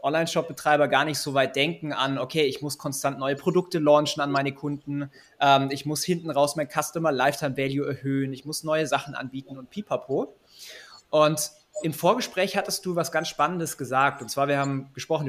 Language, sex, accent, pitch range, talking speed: German, male, German, 135-160 Hz, 190 wpm